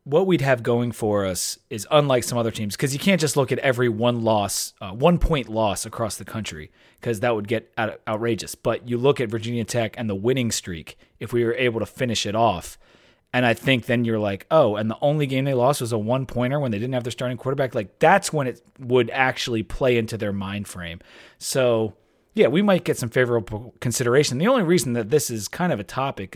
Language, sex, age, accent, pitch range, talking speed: English, male, 30-49, American, 110-135 Hz, 235 wpm